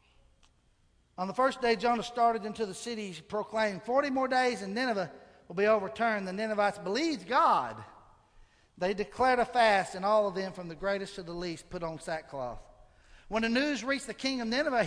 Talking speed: 195 wpm